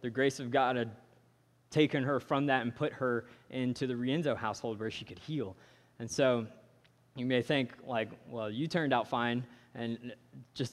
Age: 20-39